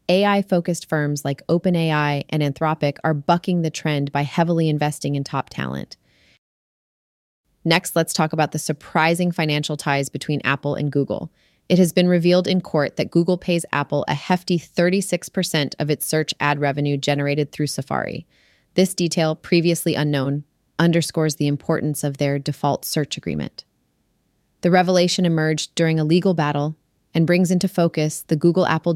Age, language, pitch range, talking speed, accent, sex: 30-49, English, 150-180 Hz, 155 wpm, American, female